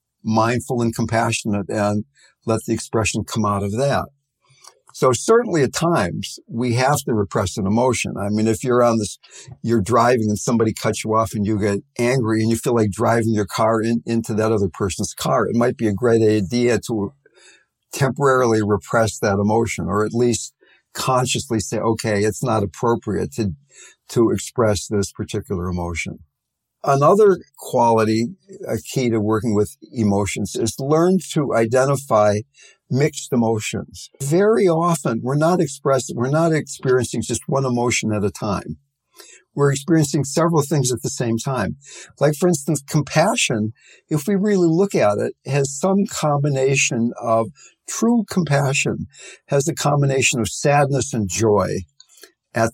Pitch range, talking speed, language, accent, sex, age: 110-140 Hz, 155 wpm, English, American, male, 60-79